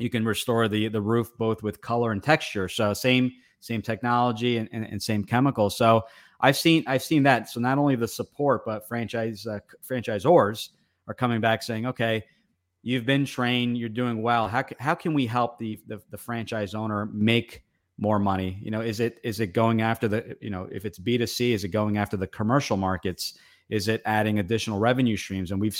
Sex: male